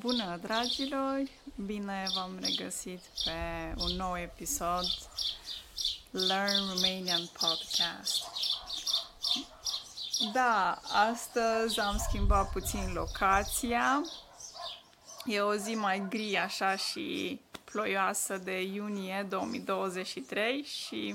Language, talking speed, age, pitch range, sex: Romanian, 80 wpm, 20-39, 185-225 Hz, female